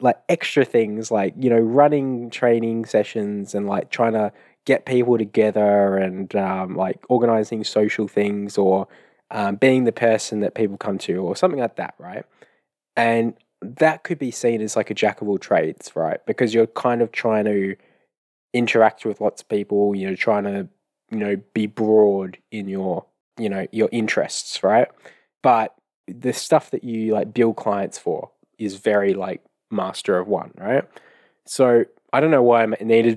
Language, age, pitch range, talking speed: English, 20-39, 100-120 Hz, 175 wpm